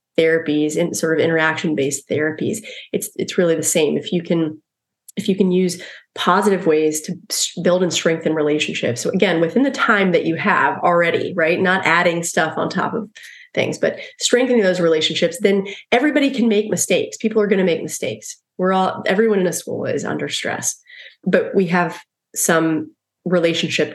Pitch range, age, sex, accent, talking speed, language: 160-195 Hz, 30-49, female, American, 180 wpm, English